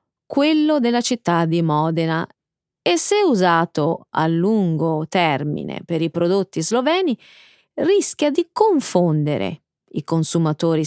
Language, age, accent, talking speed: Italian, 30-49, native, 110 wpm